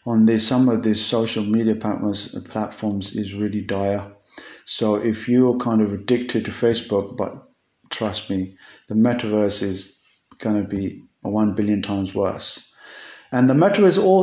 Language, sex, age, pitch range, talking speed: English, male, 50-69, 110-125 Hz, 150 wpm